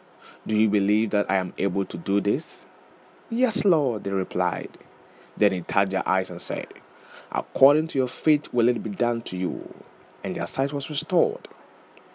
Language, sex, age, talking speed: English, male, 20-39, 180 wpm